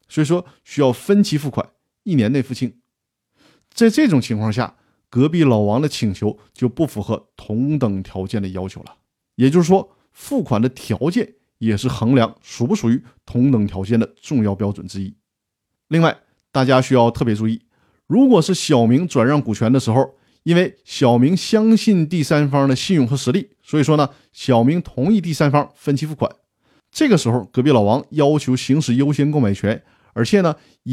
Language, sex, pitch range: Chinese, male, 110-155 Hz